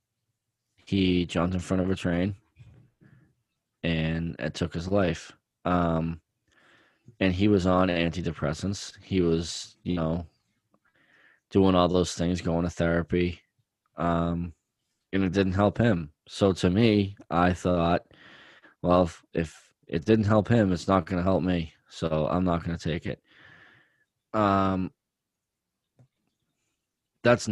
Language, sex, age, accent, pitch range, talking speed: English, male, 20-39, American, 85-100 Hz, 135 wpm